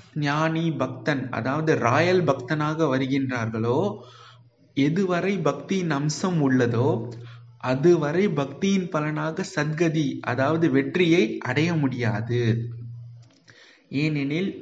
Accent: native